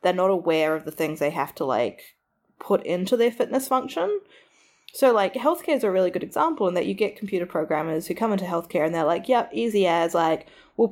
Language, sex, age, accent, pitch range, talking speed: English, female, 20-39, Australian, 170-230 Hz, 225 wpm